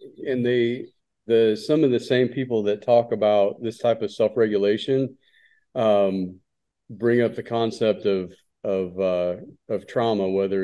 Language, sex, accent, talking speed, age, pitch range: English, male, American, 145 wpm, 40-59, 95-115 Hz